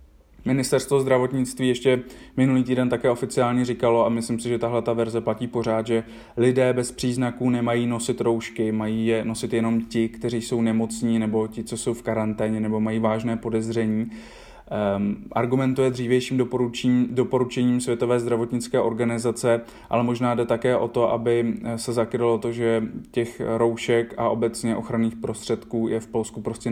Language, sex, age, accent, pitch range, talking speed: Czech, male, 20-39, native, 115-120 Hz, 155 wpm